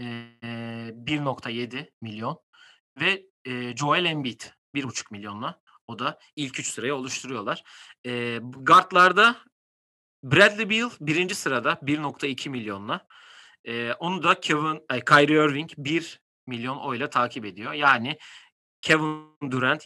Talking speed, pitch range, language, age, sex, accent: 115 wpm, 120-155 Hz, Turkish, 40-59, male, native